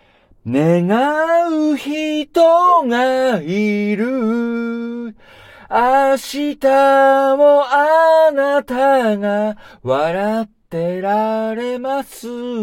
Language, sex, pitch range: Japanese, male, 170-265 Hz